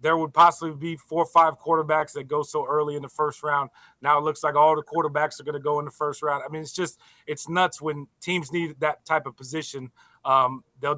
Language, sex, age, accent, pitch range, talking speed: English, male, 30-49, American, 145-165 Hz, 245 wpm